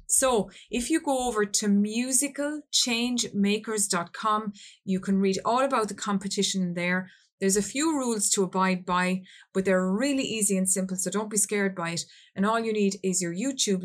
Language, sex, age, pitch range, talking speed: English, female, 30-49, 185-220 Hz, 180 wpm